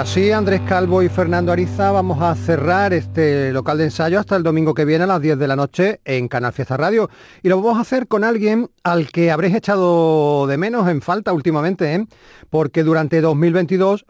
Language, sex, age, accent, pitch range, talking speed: Spanish, male, 40-59, Spanish, 150-185 Hz, 205 wpm